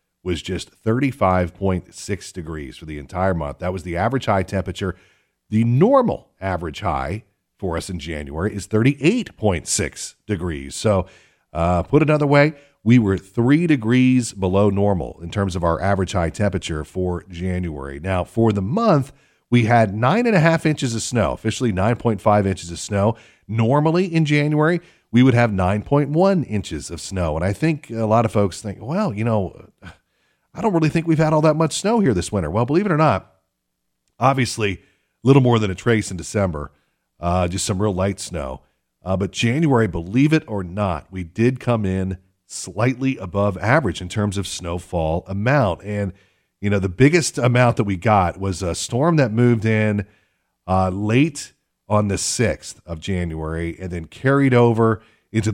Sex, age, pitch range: male, 40-59, 90-120 Hz